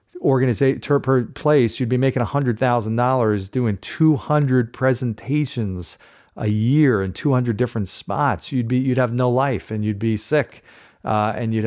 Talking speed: 165 wpm